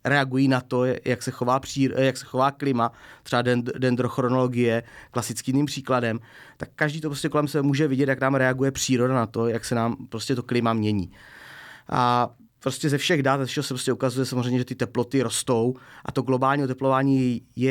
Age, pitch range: 30-49, 125-135 Hz